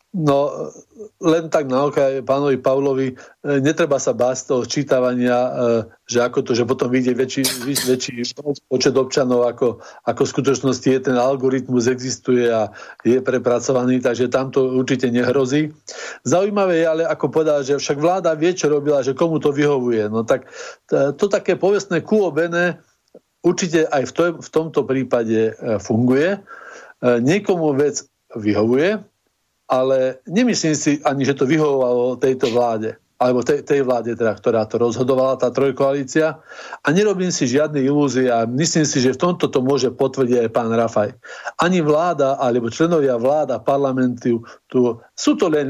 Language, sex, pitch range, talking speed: Slovak, male, 125-160 Hz, 150 wpm